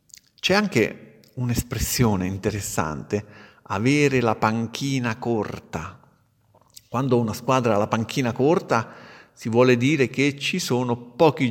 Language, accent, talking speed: Italian, native, 115 wpm